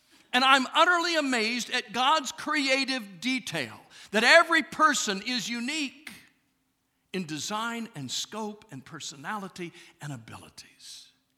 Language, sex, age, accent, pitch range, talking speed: English, male, 60-79, American, 145-240 Hz, 110 wpm